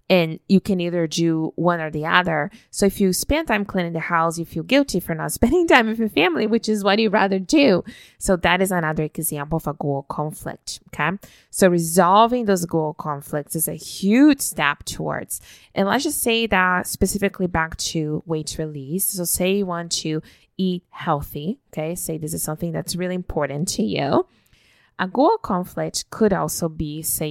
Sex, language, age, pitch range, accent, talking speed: female, English, 20-39, 155-200 Hz, American, 190 wpm